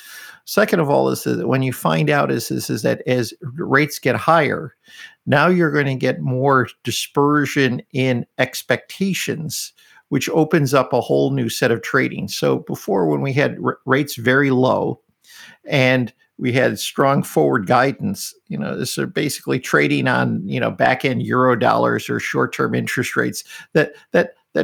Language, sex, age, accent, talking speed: English, male, 50-69, American, 165 wpm